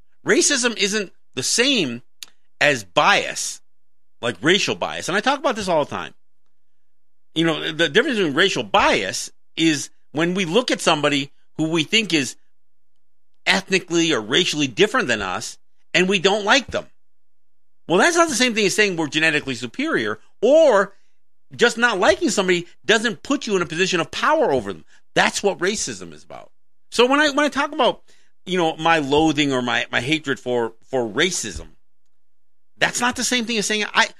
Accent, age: American, 50-69